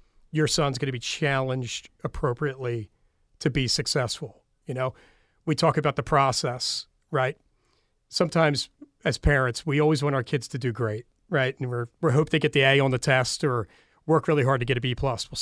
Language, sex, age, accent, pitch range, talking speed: English, male, 40-59, American, 125-150 Hz, 195 wpm